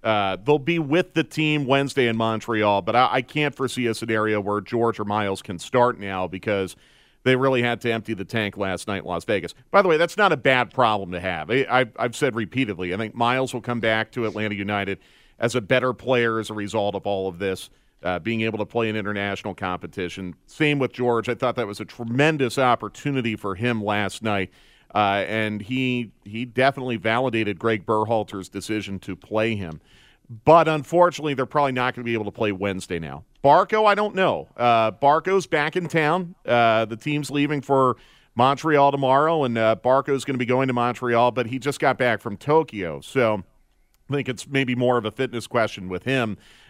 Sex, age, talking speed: male, 40-59, 210 wpm